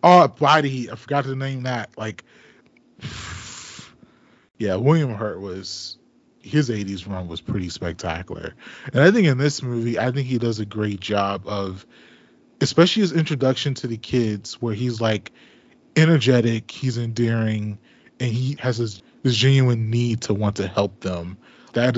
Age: 20-39